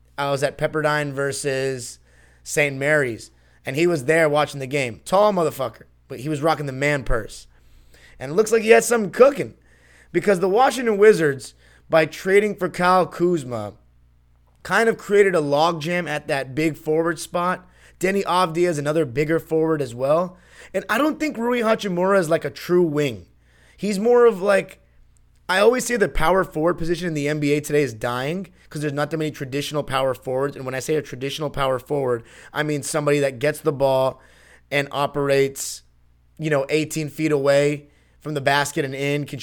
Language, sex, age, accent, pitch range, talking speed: English, male, 30-49, American, 135-165 Hz, 185 wpm